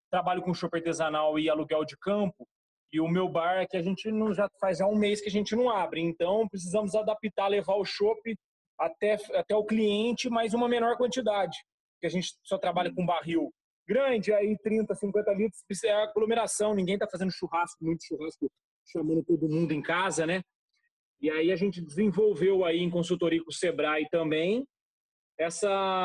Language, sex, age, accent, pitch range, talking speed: Portuguese, male, 30-49, Brazilian, 170-215 Hz, 180 wpm